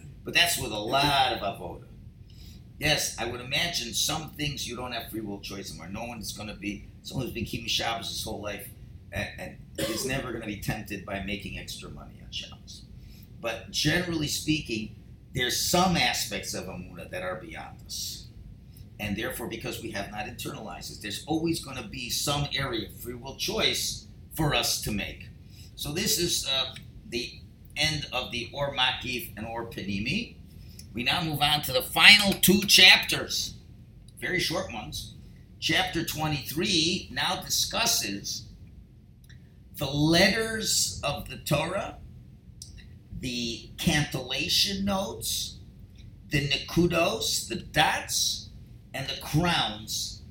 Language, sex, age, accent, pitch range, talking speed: English, male, 50-69, American, 105-145 Hz, 145 wpm